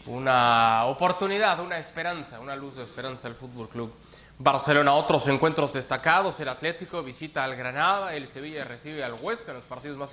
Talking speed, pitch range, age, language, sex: 170 wpm, 140-190 Hz, 30-49, Spanish, male